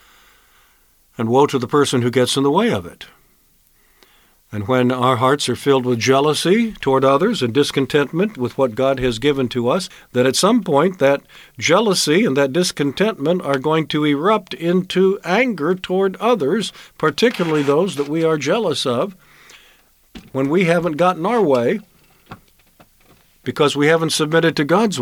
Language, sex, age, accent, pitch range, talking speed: English, male, 50-69, American, 125-165 Hz, 160 wpm